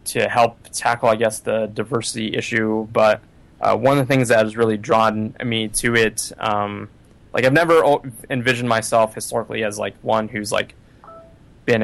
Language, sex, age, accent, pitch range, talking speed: English, male, 20-39, American, 105-120 Hz, 170 wpm